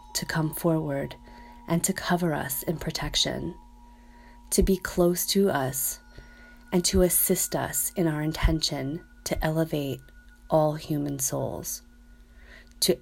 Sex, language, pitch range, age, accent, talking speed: female, English, 135-190 Hz, 30-49, American, 125 wpm